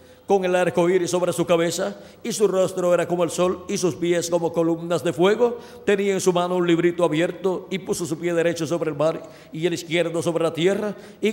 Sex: male